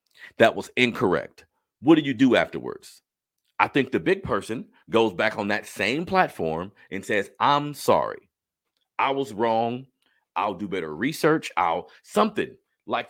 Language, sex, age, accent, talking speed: English, male, 40-59, American, 150 wpm